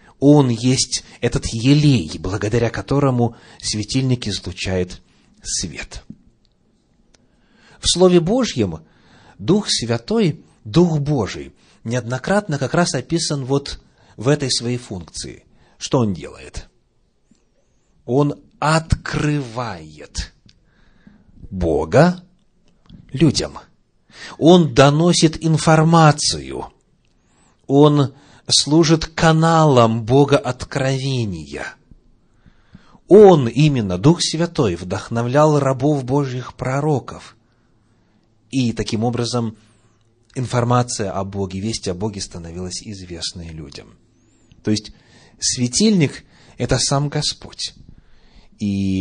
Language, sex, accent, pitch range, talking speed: Russian, male, native, 105-145 Hz, 80 wpm